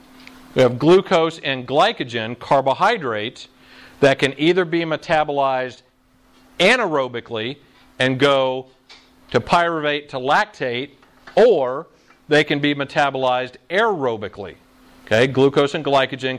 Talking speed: 105 wpm